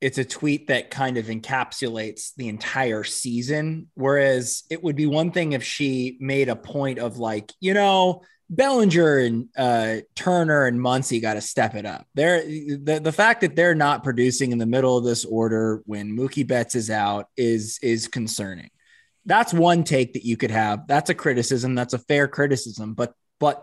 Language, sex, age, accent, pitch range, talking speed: English, male, 20-39, American, 120-155 Hz, 190 wpm